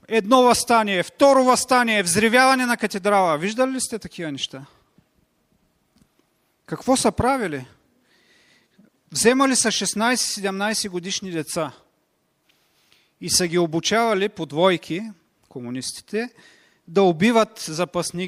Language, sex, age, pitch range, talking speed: Bulgarian, male, 40-59, 150-200 Hz, 100 wpm